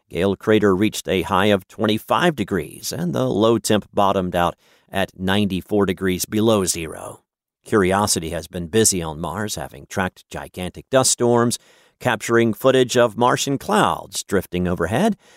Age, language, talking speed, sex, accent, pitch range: 50-69, English, 145 wpm, male, American, 90-120 Hz